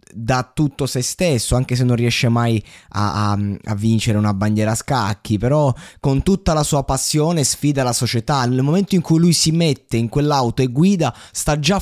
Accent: native